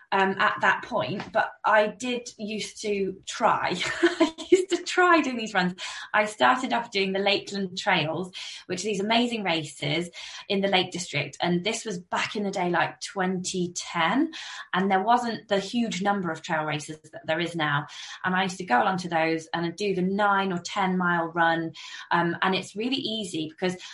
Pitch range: 170-210 Hz